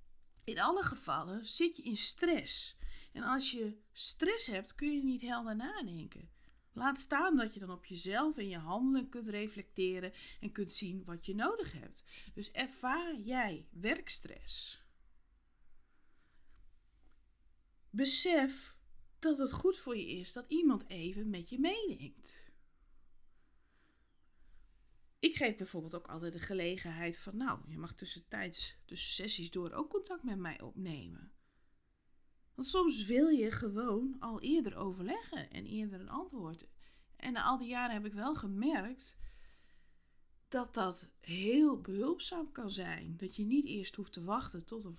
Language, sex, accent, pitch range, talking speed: Dutch, female, Dutch, 180-275 Hz, 145 wpm